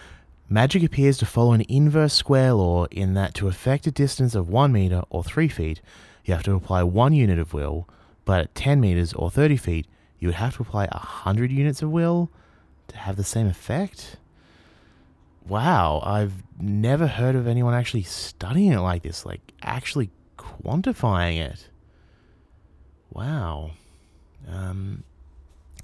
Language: English